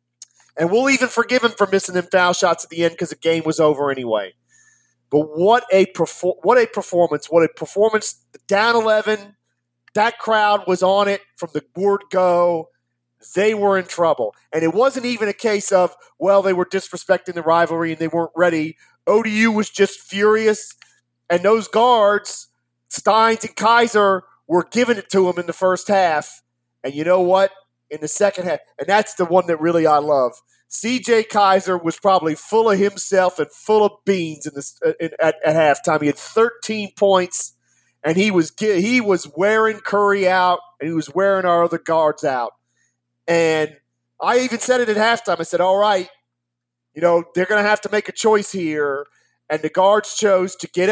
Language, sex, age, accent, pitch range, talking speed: English, male, 40-59, American, 160-210 Hz, 190 wpm